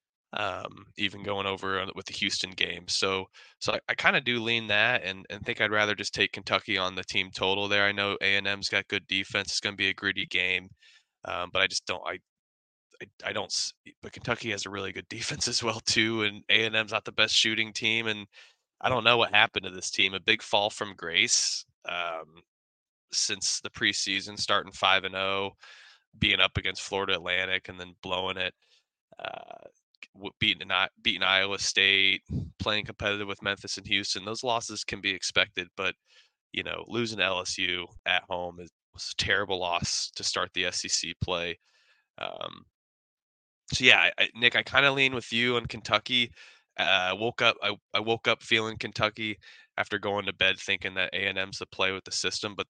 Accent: American